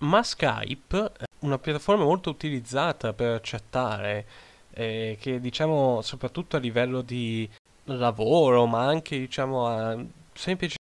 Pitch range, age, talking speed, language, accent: 115-140 Hz, 10-29, 115 wpm, Italian, native